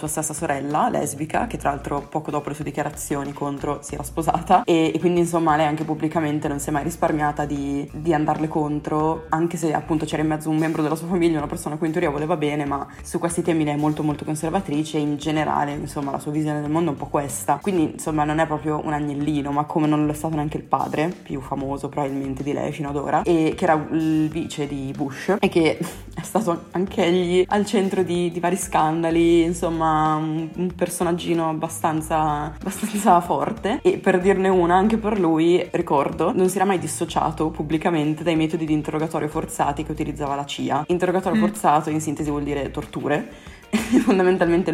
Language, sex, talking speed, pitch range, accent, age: Italian, female, 205 wpm, 150-175 Hz, native, 20-39